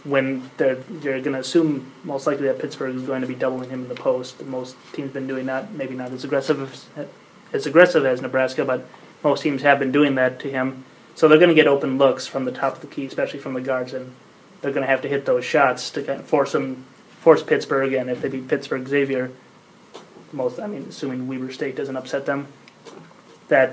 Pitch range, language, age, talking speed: 130-150 Hz, English, 20-39, 235 wpm